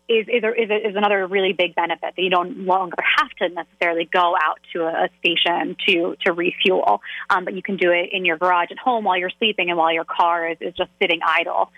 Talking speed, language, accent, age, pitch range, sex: 230 wpm, English, American, 20-39, 175-225 Hz, female